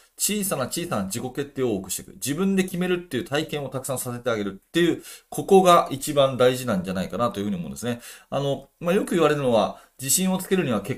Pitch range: 120-185 Hz